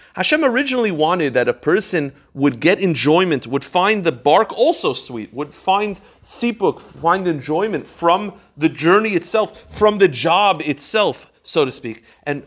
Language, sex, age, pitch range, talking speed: English, male, 30-49, 155-210 Hz, 155 wpm